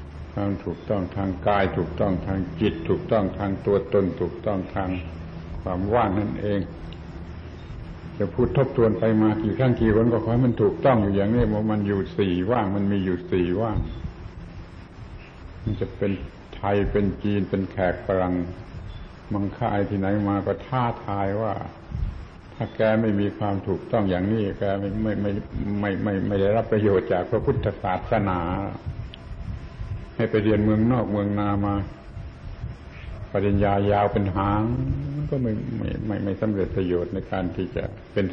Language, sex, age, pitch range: Thai, male, 70-89, 90-110 Hz